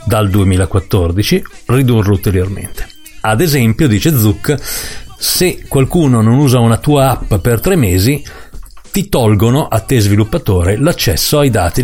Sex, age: male, 40-59